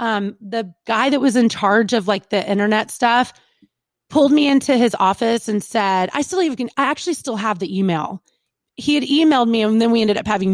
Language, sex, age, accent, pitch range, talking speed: English, female, 30-49, American, 205-250 Hz, 215 wpm